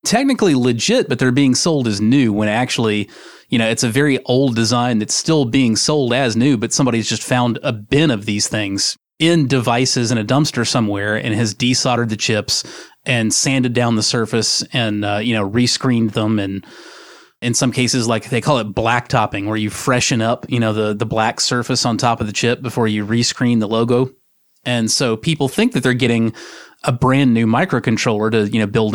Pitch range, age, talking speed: 110-130 Hz, 30-49, 205 wpm